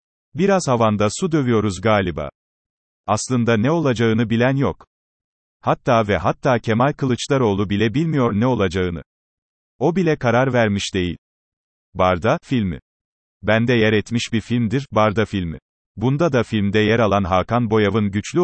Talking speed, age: 135 wpm, 40-59